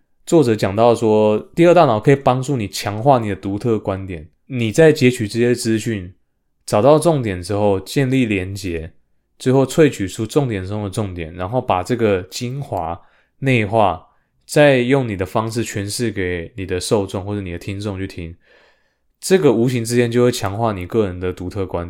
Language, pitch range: Chinese, 95-120 Hz